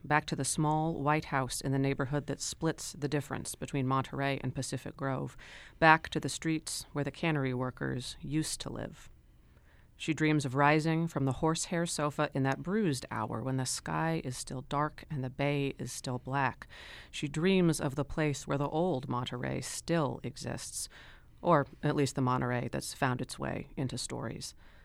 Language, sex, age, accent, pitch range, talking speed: English, female, 40-59, American, 130-150 Hz, 180 wpm